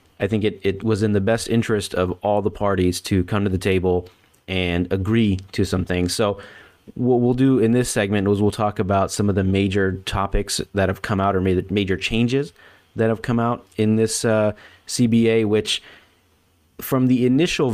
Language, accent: English, American